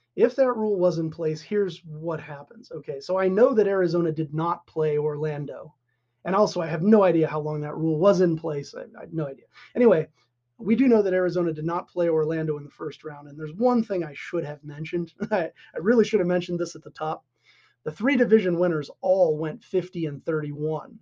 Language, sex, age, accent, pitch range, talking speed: English, male, 30-49, American, 155-195 Hz, 220 wpm